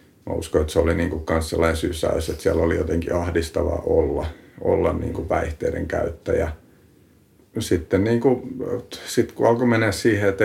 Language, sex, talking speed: Finnish, male, 155 wpm